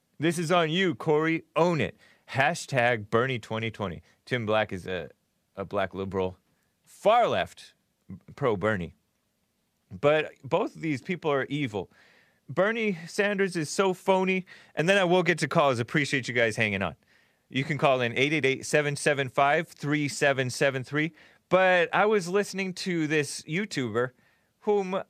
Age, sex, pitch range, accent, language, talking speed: 30-49, male, 115-165 Hz, American, English, 135 wpm